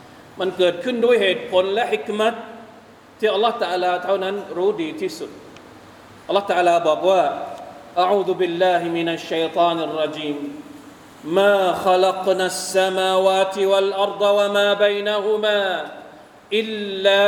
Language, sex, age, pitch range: Thai, male, 40-59, 165-225 Hz